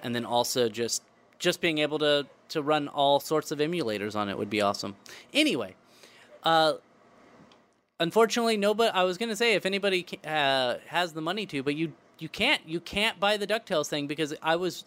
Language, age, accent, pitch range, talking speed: English, 30-49, American, 140-195 Hz, 195 wpm